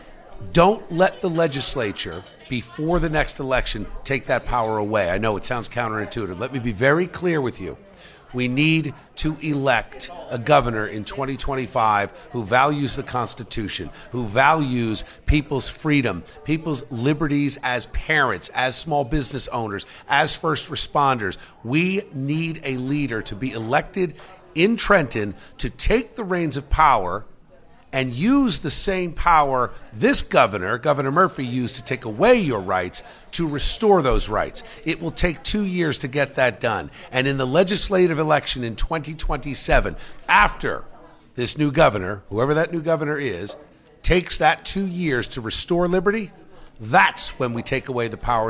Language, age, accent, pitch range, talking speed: English, 50-69, American, 120-160 Hz, 155 wpm